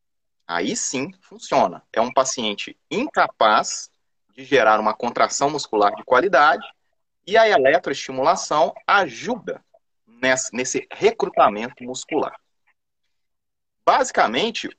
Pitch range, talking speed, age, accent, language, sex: 125-190 Hz, 90 wpm, 30-49, Brazilian, Portuguese, male